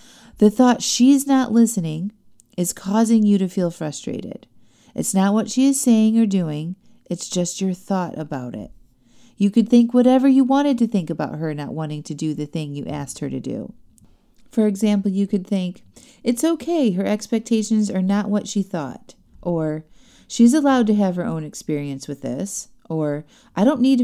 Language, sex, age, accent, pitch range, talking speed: English, female, 30-49, American, 170-235 Hz, 185 wpm